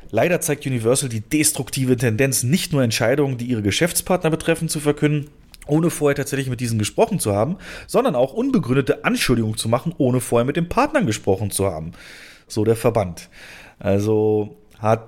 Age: 30-49